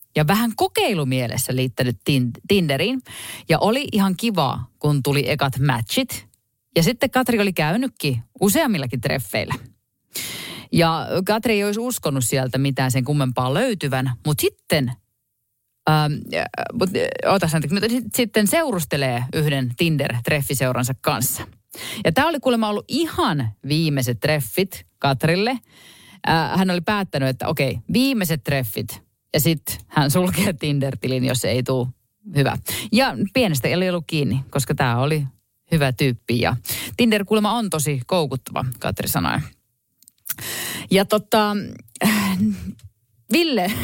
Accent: native